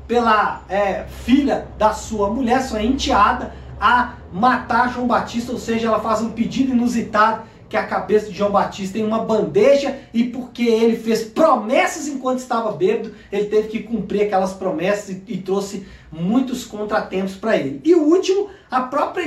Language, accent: Portuguese, Brazilian